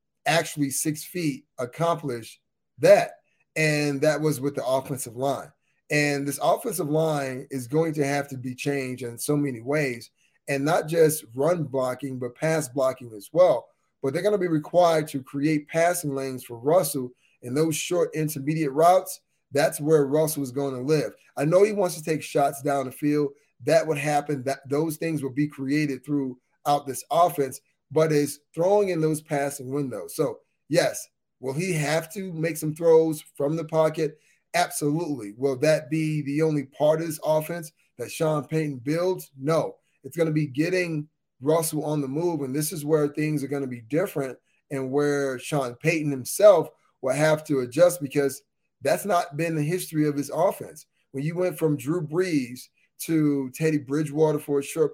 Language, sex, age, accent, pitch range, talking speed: English, male, 30-49, American, 140-160 Hz, 180 wpm